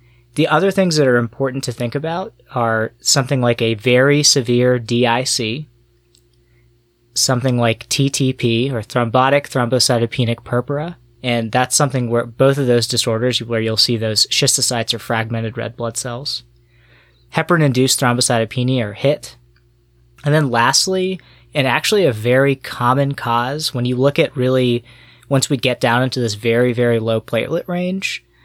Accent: American